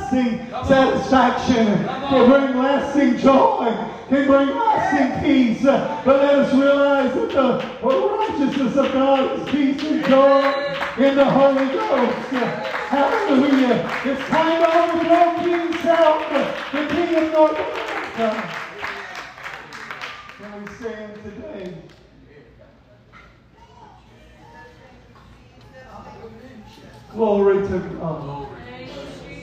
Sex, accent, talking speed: male, American, 90 wpm